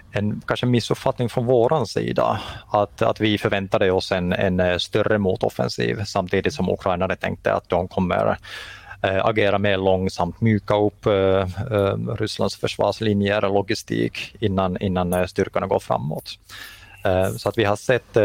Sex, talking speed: male, 135 wpm